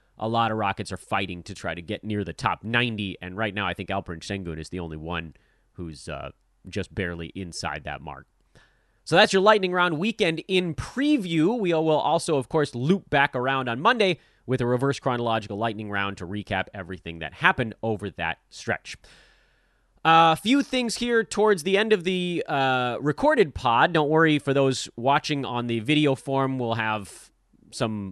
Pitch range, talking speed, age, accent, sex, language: 105-170 Hz, 190 wpm, 30-49, American, male, English